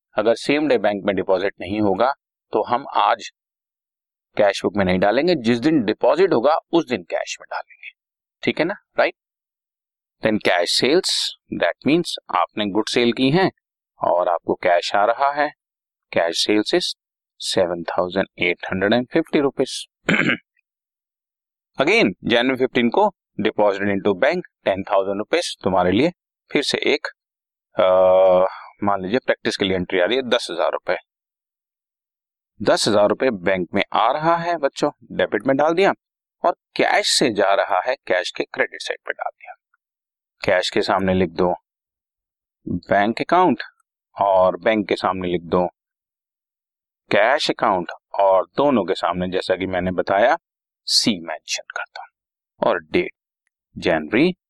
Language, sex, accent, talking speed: Hindi, male, native, 150 wpm